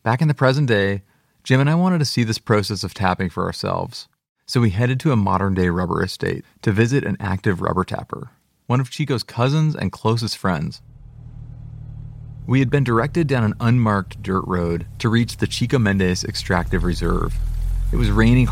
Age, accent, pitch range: 30-49, American, 95-125 Hz